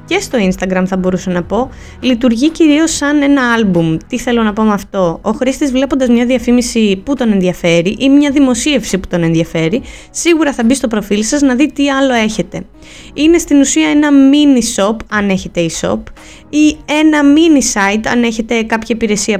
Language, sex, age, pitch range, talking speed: Greek, female, 20-39, 190-275 Hz, 180 wpm